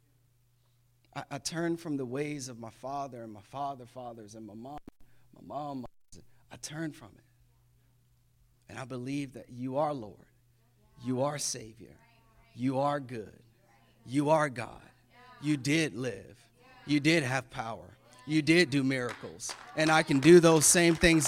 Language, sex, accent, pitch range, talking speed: English, male, American, 120-160 Hz, 160 wpm